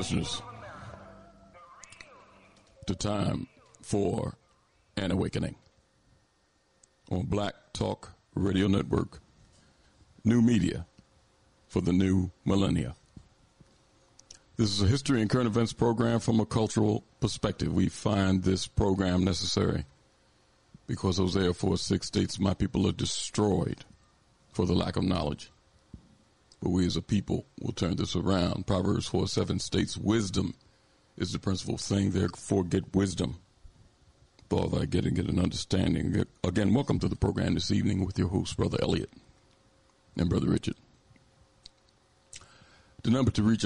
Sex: male